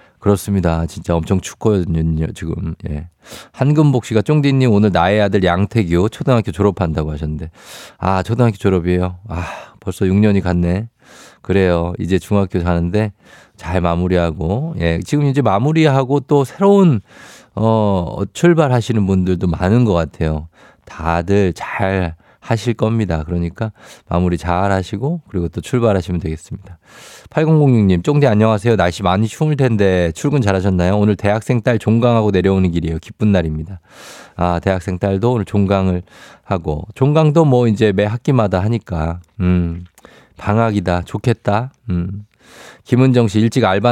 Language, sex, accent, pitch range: Korean, male, native, 90-115 Hz